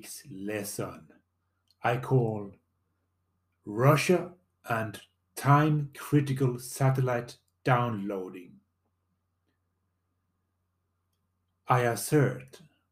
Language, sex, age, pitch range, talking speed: English, male, 30-49, 95-135 Hz, 50 wpm